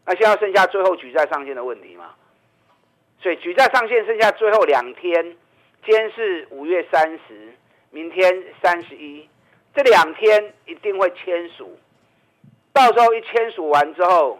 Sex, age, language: male, 50-69, Chinese